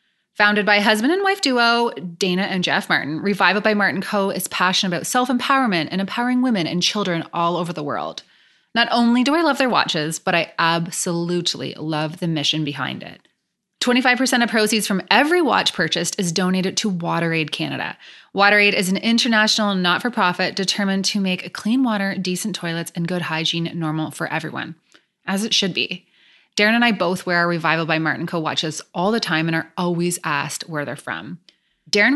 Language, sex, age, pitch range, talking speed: English, female, 20-39, 165-220 Hz, 185 wpm